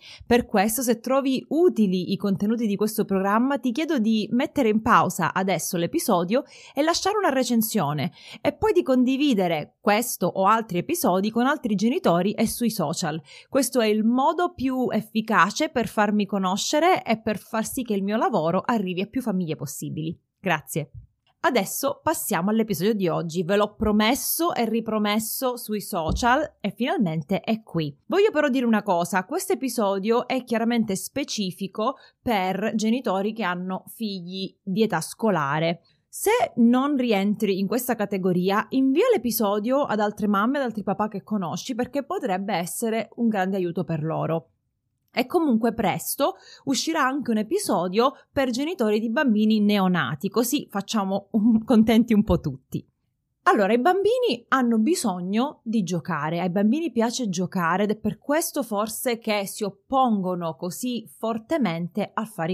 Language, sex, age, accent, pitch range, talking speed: Italian, female, 30-49, native, 185-250 Hz, 150 wpm